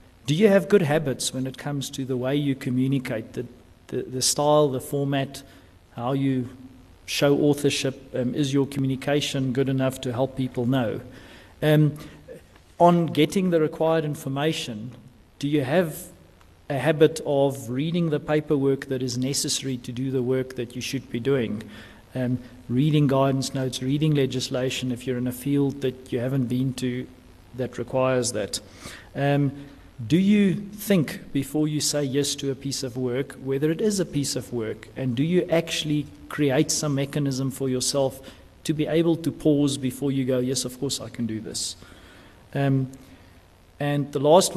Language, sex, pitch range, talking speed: English, male, 125-145 Hz, 170 wpm